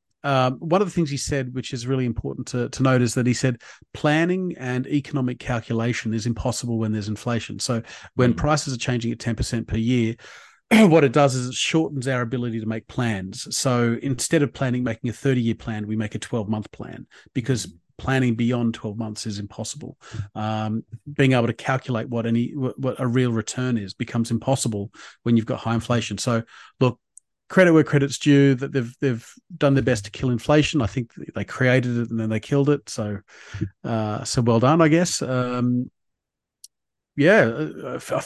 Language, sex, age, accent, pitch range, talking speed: English, male, 40-59, Australian, 115-135 Hz, 195 wpm